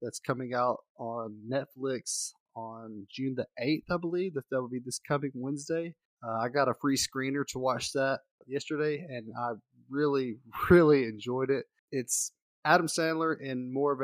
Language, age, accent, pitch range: English, 20-39, American, 115-140 Hz